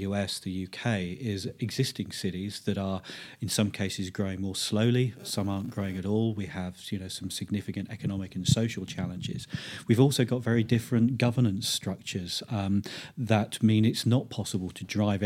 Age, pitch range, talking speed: 40-59, 100-115 Hz, 175 wpm